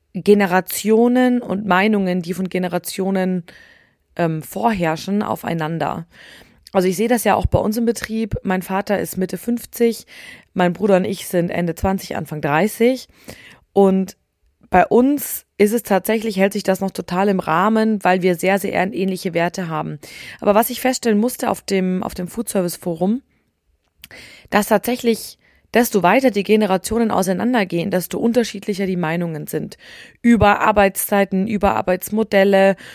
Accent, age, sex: German, 20-39, female